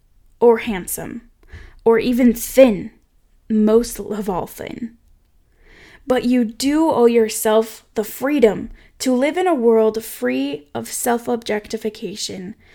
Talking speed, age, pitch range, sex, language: 115 wpm, 10-29, 205-245 Hz, female, English